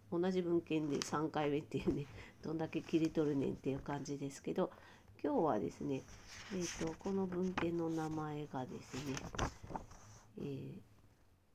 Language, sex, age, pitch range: Japanese, female, 40-59, 125-190 Hz